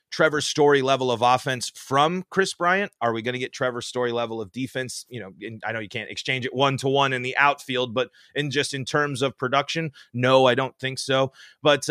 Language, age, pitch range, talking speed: English, 30-49, 120-160 Hz, 215 wpm